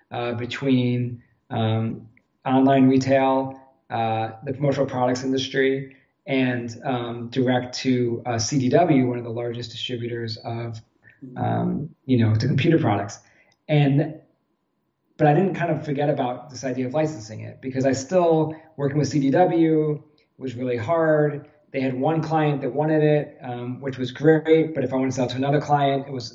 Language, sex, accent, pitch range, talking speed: English, male, American, 125-145 Hz, 165 wpm